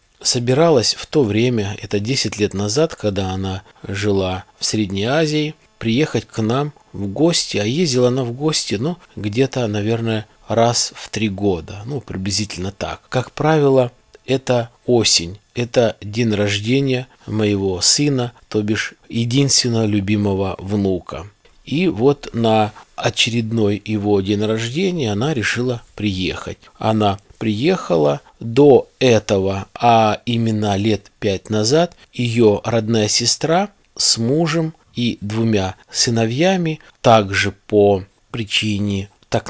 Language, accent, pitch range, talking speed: Russian, native, 100-125 Hz, 120 wpm